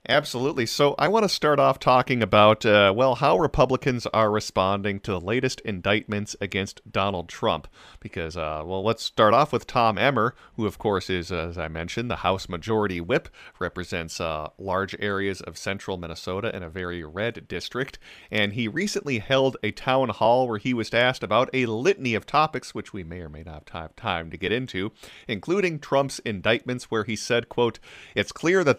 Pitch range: 90-120 Hz